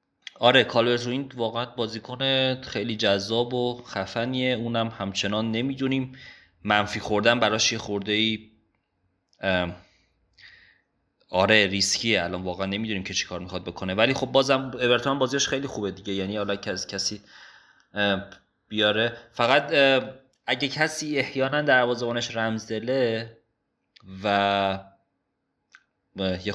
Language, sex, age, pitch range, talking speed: Persian, male, 30-49, 100-125 Hz, 110 wpm